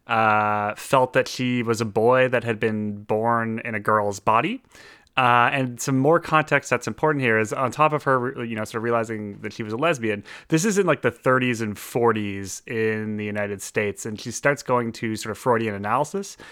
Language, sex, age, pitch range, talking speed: English, male, 30-49, 110-130 Hz, 215 wpm